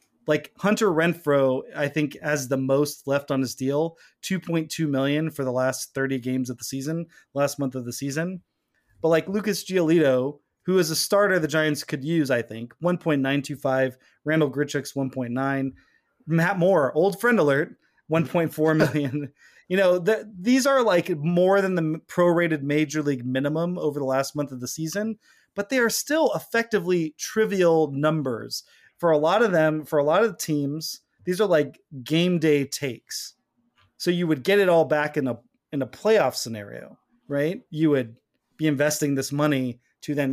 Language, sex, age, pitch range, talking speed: English, male, 30-49, 140-175 Hz, 185 wpm